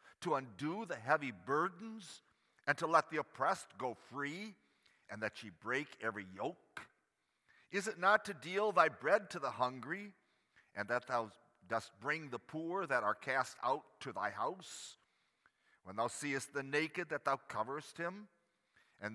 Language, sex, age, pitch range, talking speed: English, male, 50-69, 120-170 Hz, 165 wpm